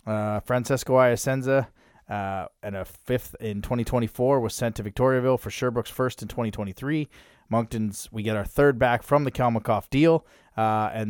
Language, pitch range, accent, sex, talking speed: English, 105-125 Hz, American, male, 160 wpm